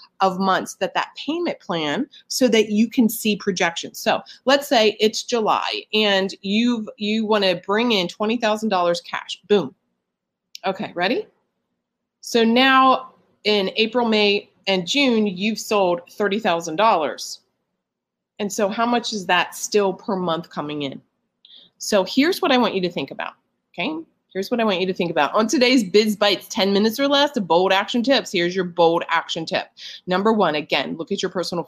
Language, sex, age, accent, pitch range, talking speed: English, female, 30-49, American, 170-220 Hz, 180 wpm